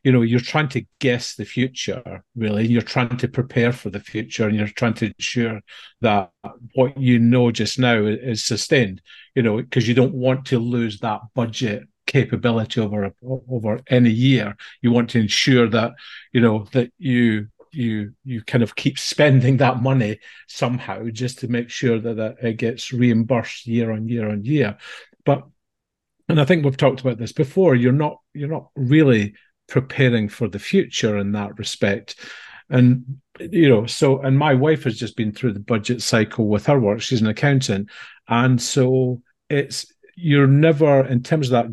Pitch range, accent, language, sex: 110-130 Hz, British, English, male